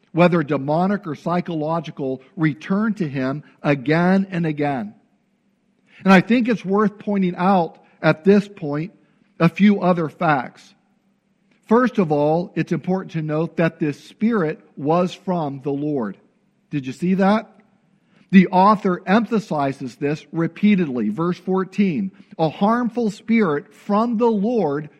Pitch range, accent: 160-205 Hz, American